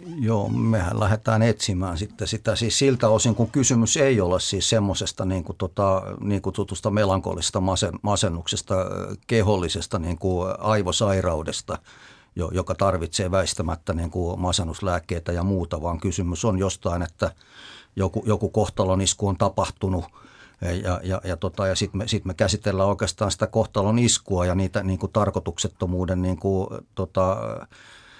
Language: Finnish